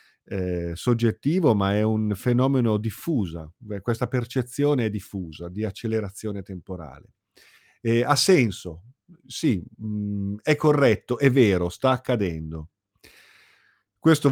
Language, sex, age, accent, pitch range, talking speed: Italian, male, 50-69, native, 100-130 Hz, 110 wpm